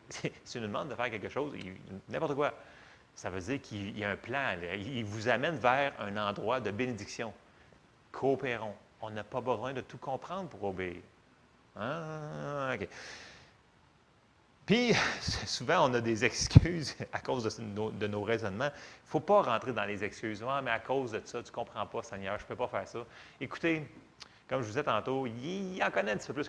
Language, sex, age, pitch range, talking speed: French, male, 30-49, 105-140 Hz, 210 wpm